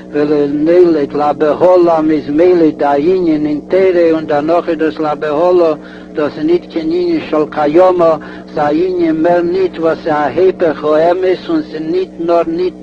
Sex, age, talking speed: male, 60-79, 110 wpm